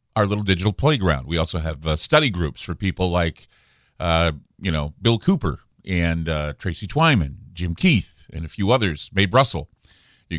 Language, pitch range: English, 85-125 Hz